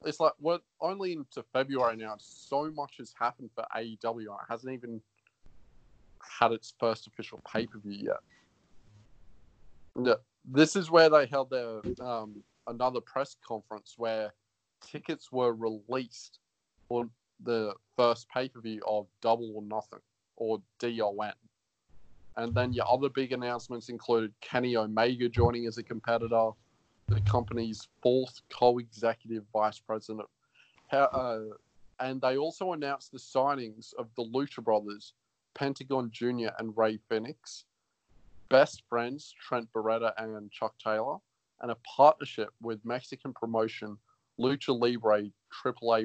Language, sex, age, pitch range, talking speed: English, male, 20-39, 110-130 Hz, 130 wpm